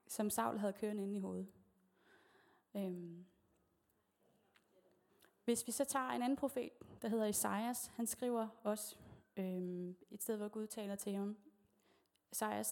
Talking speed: 140 wpm